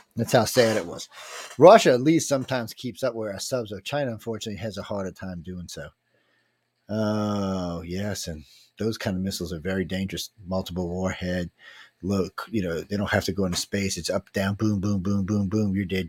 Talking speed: 205 wpm